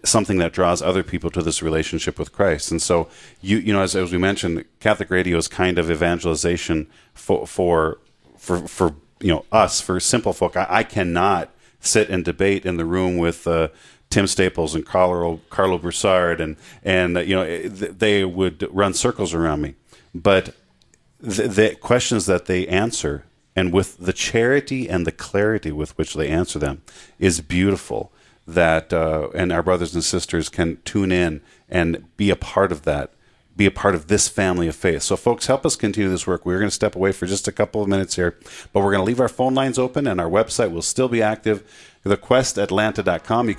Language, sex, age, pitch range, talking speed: English, male, 40-59, 85-105 Hz, 200 wpm